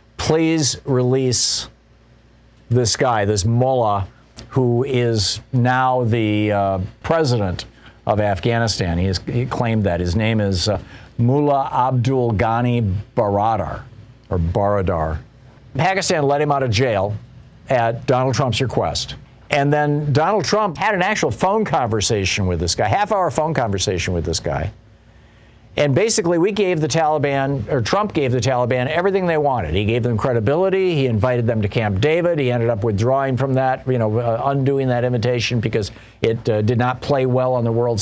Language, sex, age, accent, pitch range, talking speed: English, male, 50-69, American, 110-135 Hz, 160 wpm